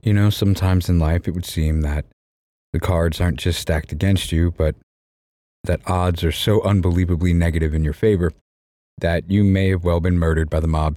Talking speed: 195 wpm